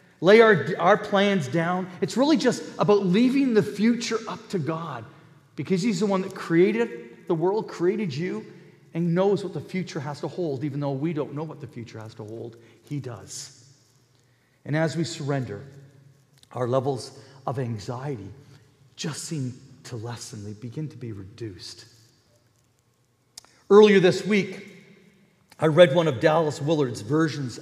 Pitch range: 125-190 Hz